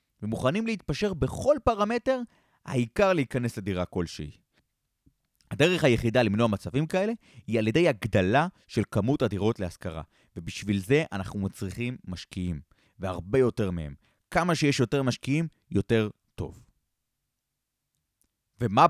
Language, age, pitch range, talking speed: Hebrew, 30-49, 105-155 Hz, 115 wpm